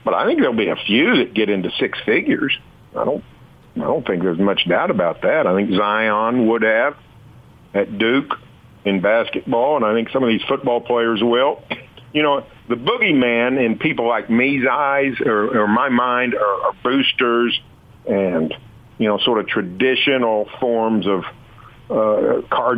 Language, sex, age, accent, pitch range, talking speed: English, male, 50-69, American, 105-125 Hz, 170 wpm